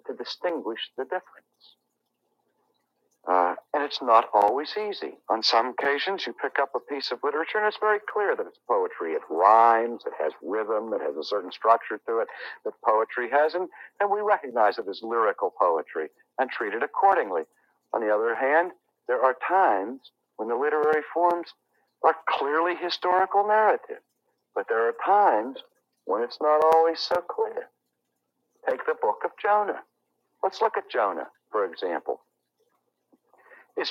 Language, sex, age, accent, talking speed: English, male, 60-79, American, 160 wpm